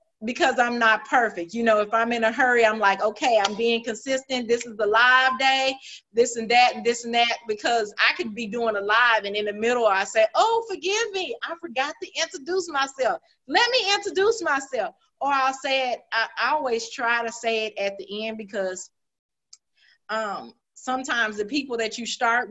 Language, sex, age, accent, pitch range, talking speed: English, female, 30-49, American, 220-270 Hz, 200 wpm